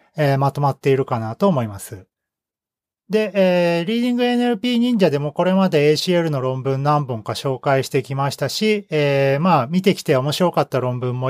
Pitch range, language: 135-190 Hz, Japanese